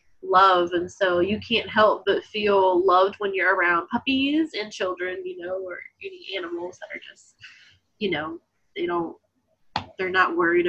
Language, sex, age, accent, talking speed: English, female, 20-39, American, 170 wpm